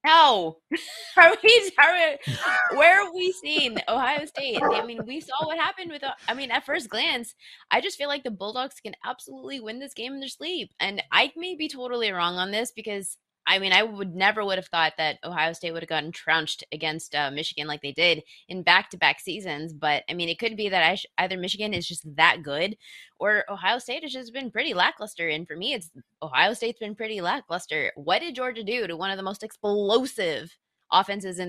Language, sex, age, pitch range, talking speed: English, female, 20-39, 170-250 Hz, 215 wpm